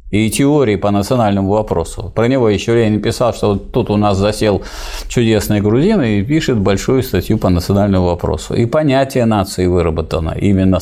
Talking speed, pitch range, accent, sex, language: 165 wpm, 95-120 Hz, native, male, Russian